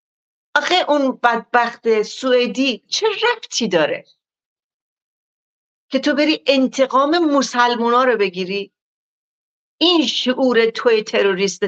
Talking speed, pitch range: 90 wpm, 195-260 Hz